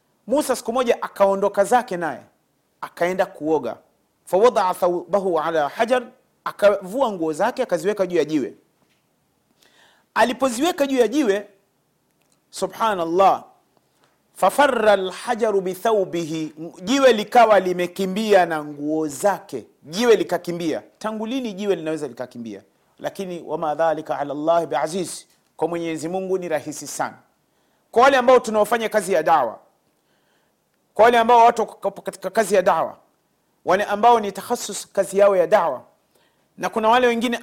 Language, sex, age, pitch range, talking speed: Swahili, male, 40-59, 170-230 Hz, 125 wpm